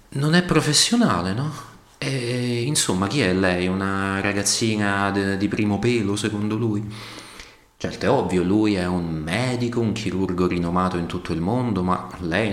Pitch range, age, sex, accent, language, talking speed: 90-110 Hz, 30-49, male, native, Italian, 155 wpm